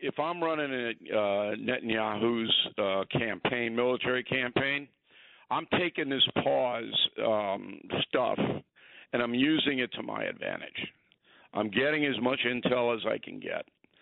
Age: 50-69